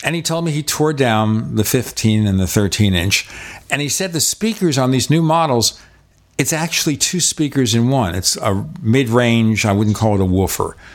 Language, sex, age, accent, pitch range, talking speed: English, male, 50-69, American, 105-135 Hz, 205 wpm